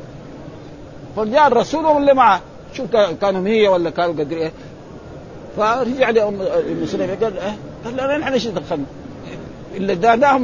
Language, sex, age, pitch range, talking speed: Arabic, male, 50-69, 165-225 Hz, 120 wpm